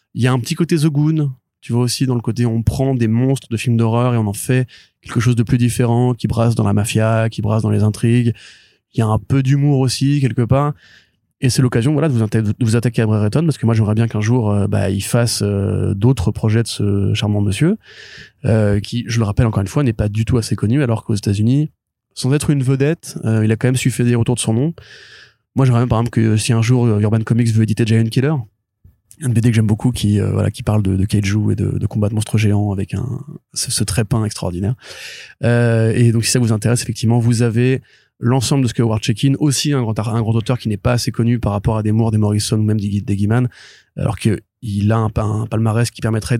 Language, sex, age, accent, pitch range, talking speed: French, male, 20-39, French, 110-125 Hz, 255 wpm